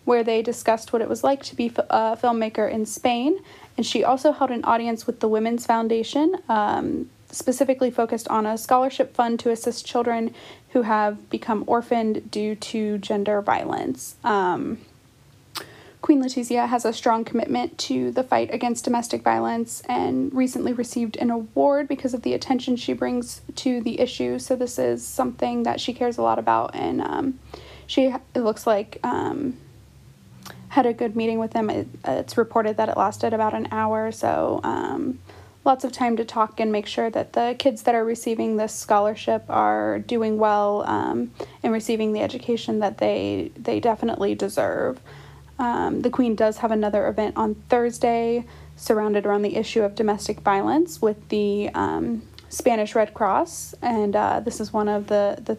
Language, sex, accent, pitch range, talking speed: English, female, American, 210-245 Hz, 175 wpm